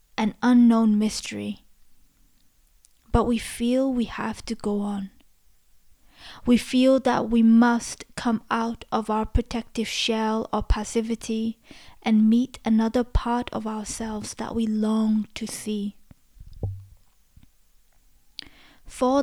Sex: female